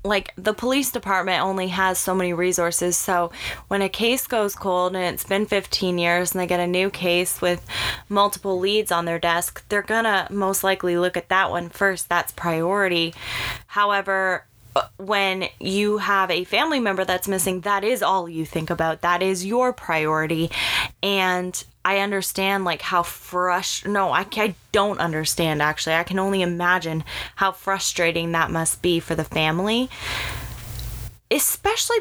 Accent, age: American, 20-39